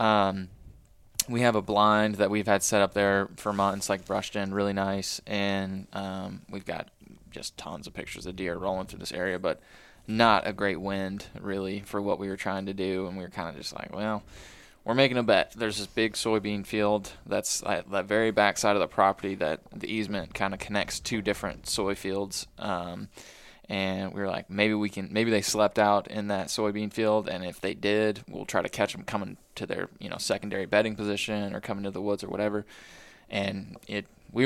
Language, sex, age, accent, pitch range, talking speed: English, male, 20-39, American, 95-110 Hz, 215 wpm